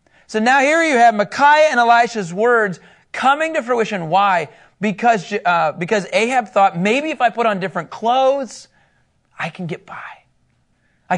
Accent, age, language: American, 30-49, English